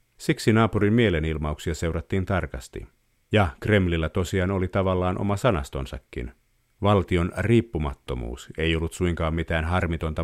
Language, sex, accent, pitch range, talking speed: Finnish, male, native, 80-95 Hz, 110 wpm